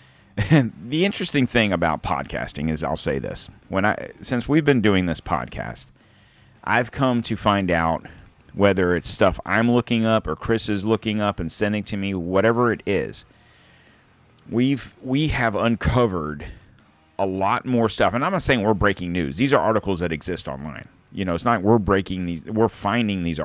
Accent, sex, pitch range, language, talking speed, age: American, male, 85-115 Hz, English, 185 wpm, 40-59